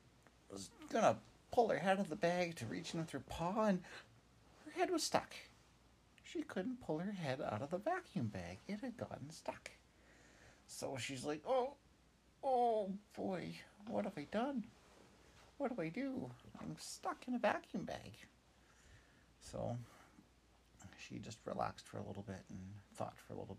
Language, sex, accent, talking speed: English, male, American, 170 wpm